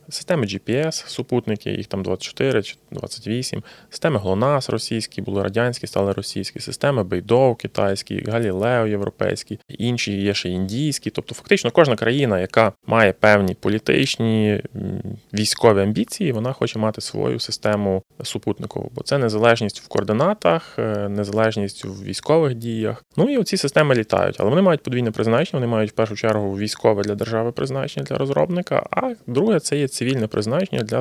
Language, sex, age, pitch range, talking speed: Ukrainian, male, 20-39, 105-140 Hz, 150 wpm